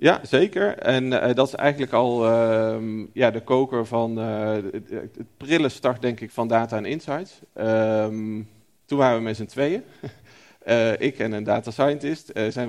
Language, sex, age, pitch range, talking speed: Dutch, male, 40-59, 110-130 Hz, 185 wpm